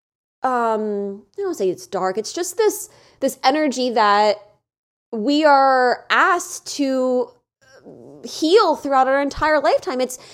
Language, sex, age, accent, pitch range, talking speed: English, female, 20-39, American, 230-315 Hz, 130 wpm